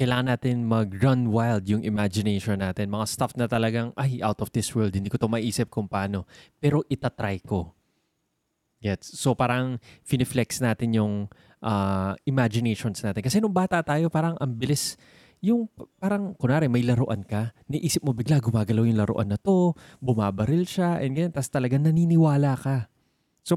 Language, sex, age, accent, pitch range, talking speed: Filipino, male, 20-39, native, 110-135 Hz, 160 wpm